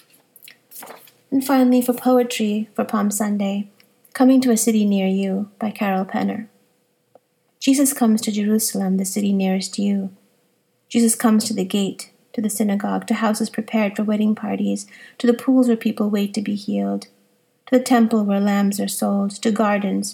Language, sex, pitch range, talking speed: English, female, 205-235 Hz, 165 wpm